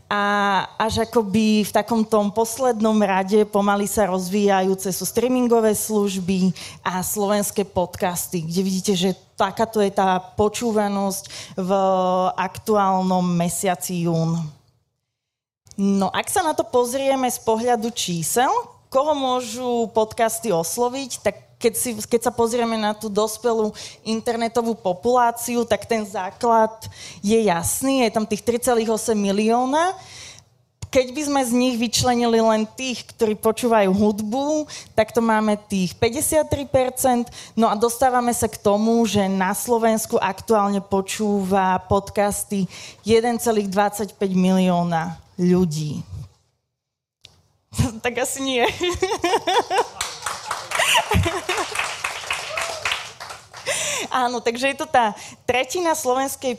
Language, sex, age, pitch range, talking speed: Slovak, female, 30-49, 190-240 Hz, 110 wpm